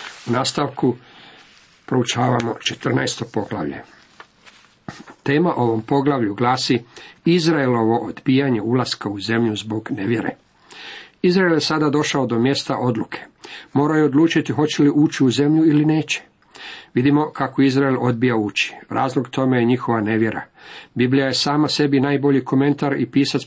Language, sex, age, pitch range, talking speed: Croatian, male, 50-69, 110-140 Hz, 130 wpm